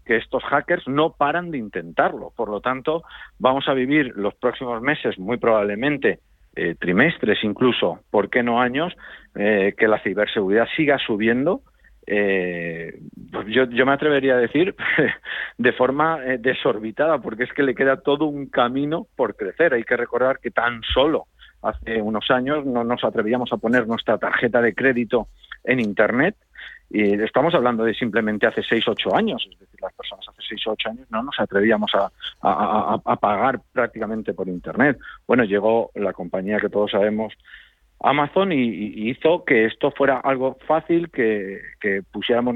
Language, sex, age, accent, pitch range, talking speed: Spanish, male, 50-69, Spanish, 110-135 Hz, 170 wpm